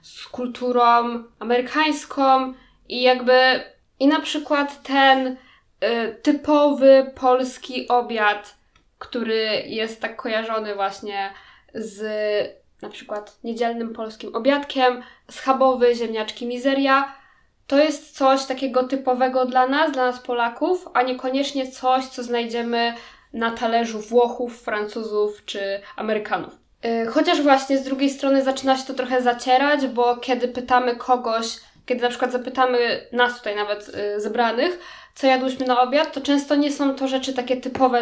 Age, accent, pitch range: 10-29, native, 235-265 Hz